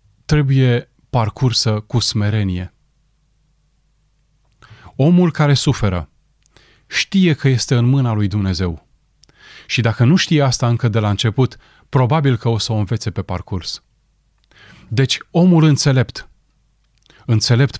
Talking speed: 120 wpm